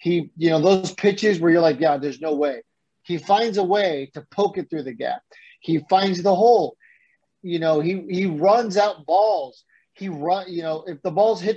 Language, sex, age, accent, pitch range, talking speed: English, male, 30-49, American, 150-205 Hz, 215 wpm